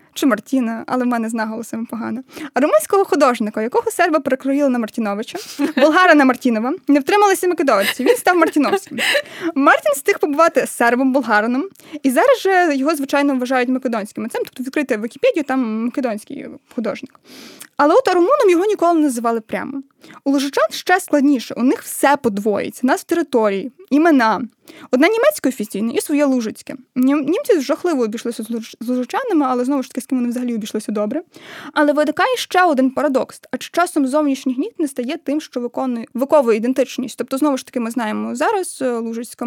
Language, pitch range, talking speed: Ukrainian, 240-310 Hz, 165 wpm